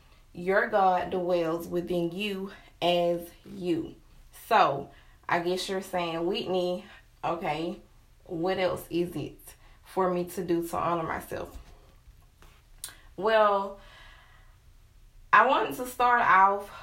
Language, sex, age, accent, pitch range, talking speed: English, female, 20-39, American, 170-200 Hz, 110 wpm